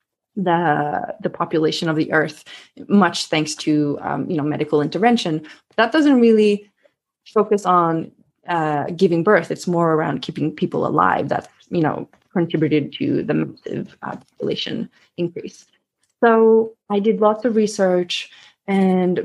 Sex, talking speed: female, 140 wpm